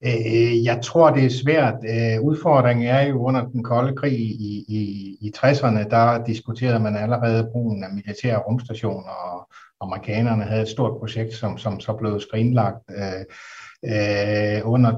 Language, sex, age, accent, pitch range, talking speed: Danish, male, 60-79, native, 110-130 Hz, 145 wpm